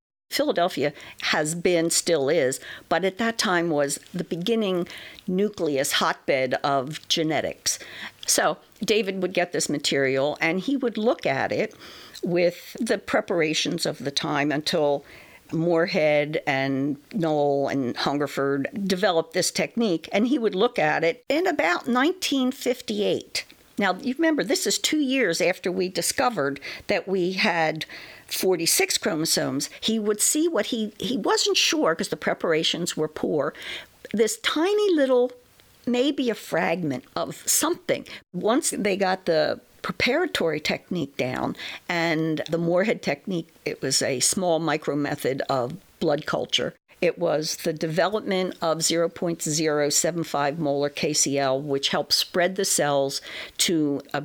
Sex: female